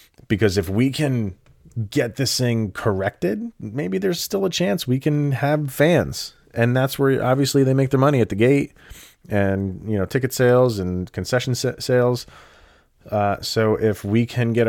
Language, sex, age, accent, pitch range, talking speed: English, male, 30-49, American, 95-125 Hz, 175 wpm